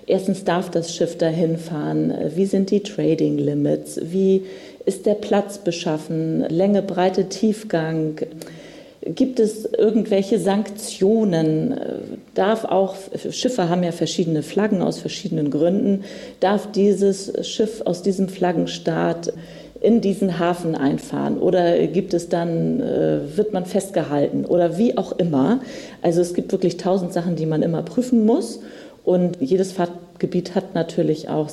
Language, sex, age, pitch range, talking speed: German, female, 40-59, 160-195 Hz, 135 wpm